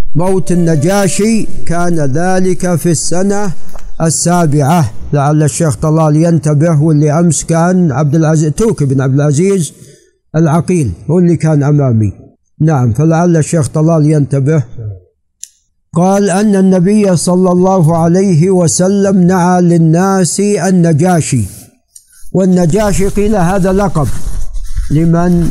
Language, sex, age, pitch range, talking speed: Arabic, male, 50-69, 145-175 Hz, 105 wpm